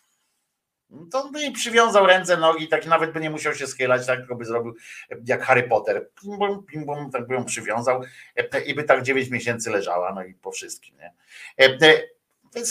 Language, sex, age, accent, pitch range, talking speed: Polish, male, 50-69, native, 130-215 Hz, 185 wpm